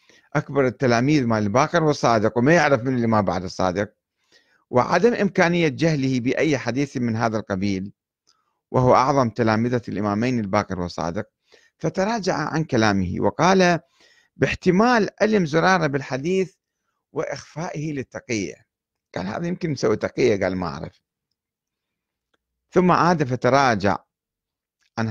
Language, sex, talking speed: Arabic, male, 115 wpm